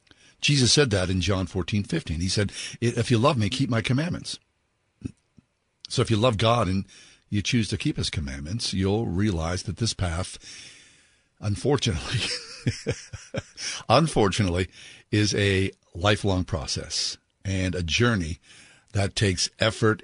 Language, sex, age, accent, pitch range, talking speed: English, male, 60-79, American, 95-115 Hz, 135 wpm